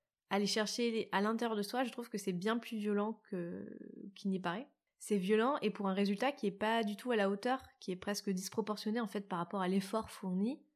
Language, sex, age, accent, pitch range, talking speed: French, female, 20-39, French, 195-235 Hz, 235 wpm